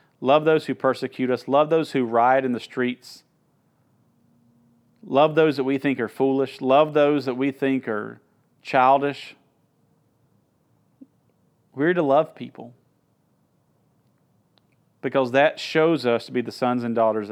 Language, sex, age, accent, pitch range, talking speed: English, male, 40-59, American, 115-135 Hz, 140 wpm